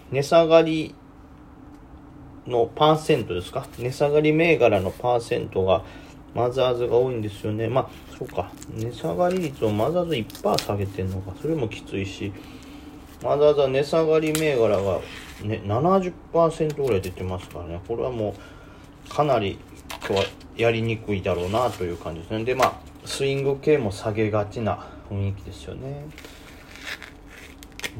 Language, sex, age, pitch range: Japanese, male, 30-49, 95-140 Hz